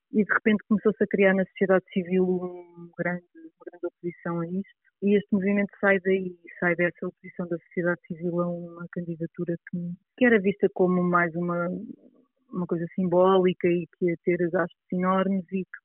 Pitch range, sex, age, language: 175-190 Hz, female, 30-49, Portuguese